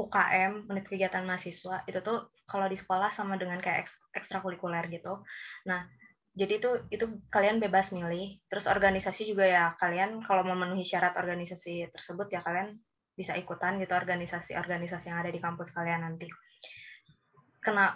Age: 20-39